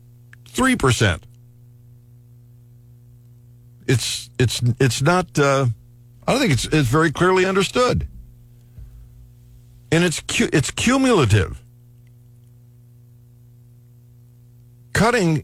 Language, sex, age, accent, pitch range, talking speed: English, male, 60-79, American, 120-135 Hz, 80 wpm